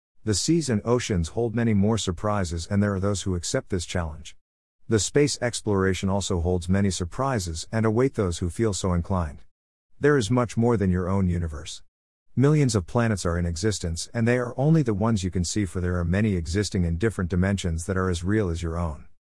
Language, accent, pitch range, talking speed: English, American, 85-115 Hz, 210 wpm